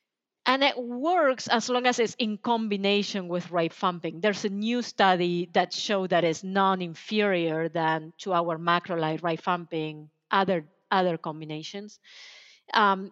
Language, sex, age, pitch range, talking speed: English, female, 40-59, 175-220 Hz, 135 wpm